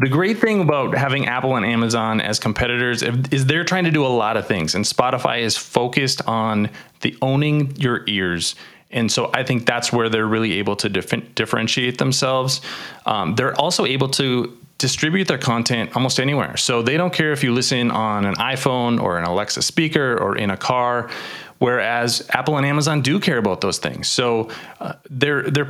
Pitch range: 110-140 Hz